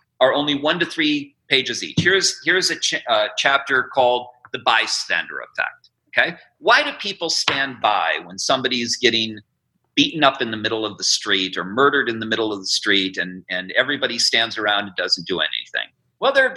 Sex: male